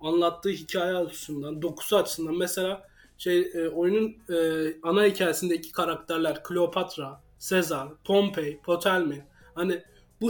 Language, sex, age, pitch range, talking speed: Turkish, male, 30-49, 160-205 Hz, 100 wpm